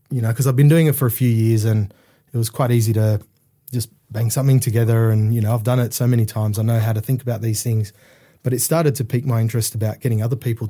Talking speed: 275 wpm